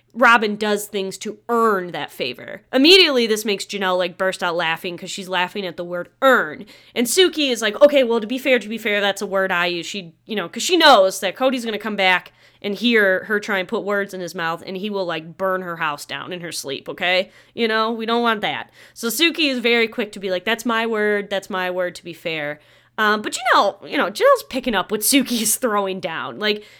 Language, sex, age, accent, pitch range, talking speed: English, female, 20-39, American, 180-225 Hz, 245 wpm